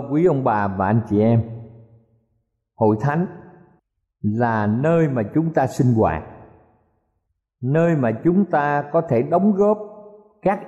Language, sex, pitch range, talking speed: Vietnamese, male, 105-160 Hz, 140 wpm